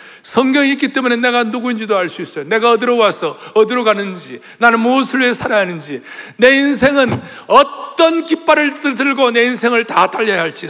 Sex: male